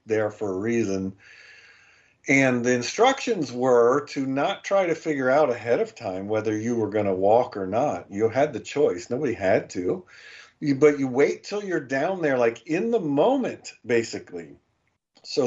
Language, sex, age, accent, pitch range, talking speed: English, male, 50-69, American, 110-135 Hz, 175 wpm